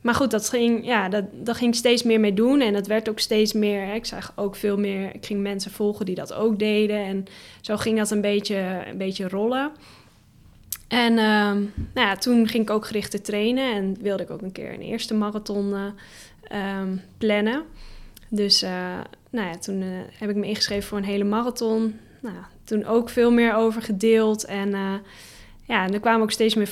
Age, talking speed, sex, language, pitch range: 10-29, 210 wpm, female, Dutch, 195-225 Hz